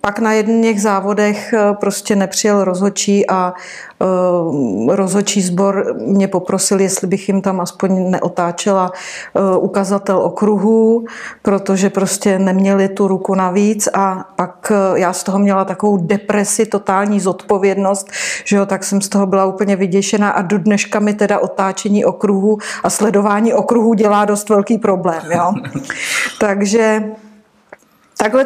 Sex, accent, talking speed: female, native, 135 wpm